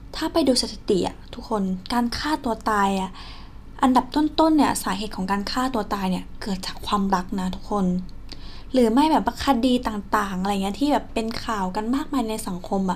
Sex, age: female, 10-29